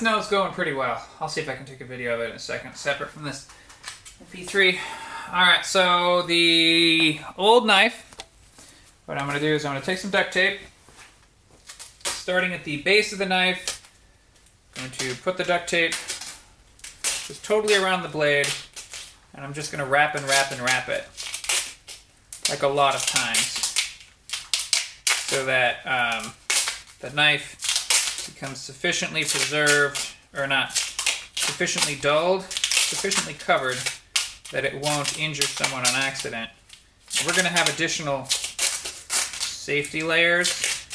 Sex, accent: male, American